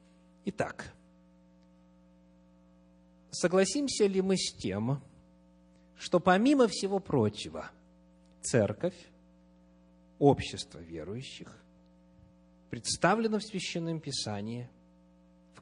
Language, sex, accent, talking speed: Russian, male, native, 70 wpm